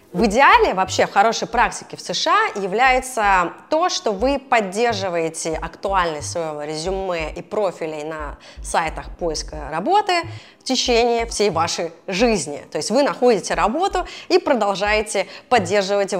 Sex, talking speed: female, 130 wpm